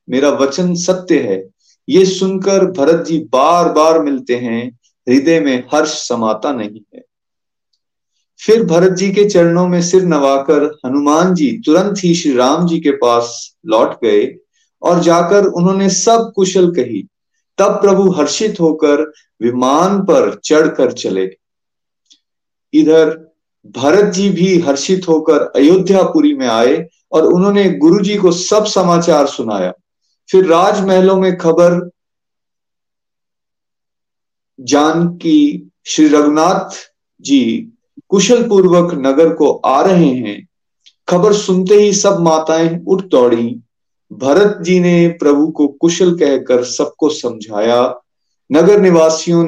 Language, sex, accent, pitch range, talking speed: Hindi, male, native, 150-190 Hz, 125 wpm